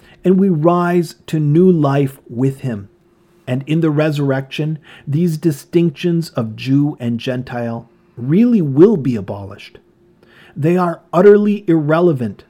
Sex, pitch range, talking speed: male, 130-175 Hz, 125 wpm